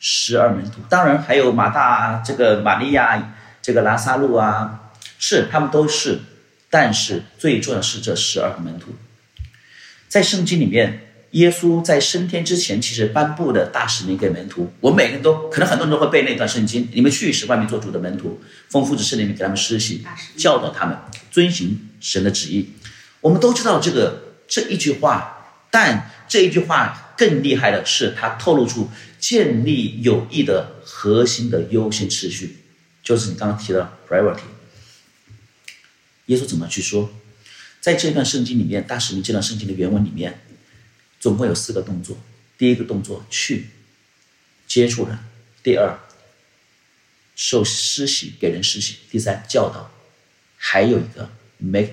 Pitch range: 105-135 Hz